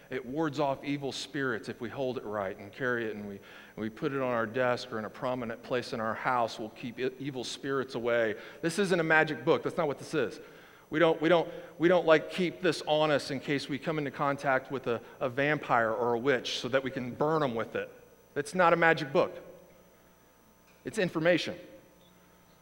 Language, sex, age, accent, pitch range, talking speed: English, male, 40-59, American, 115-165 Hz, 225 wpm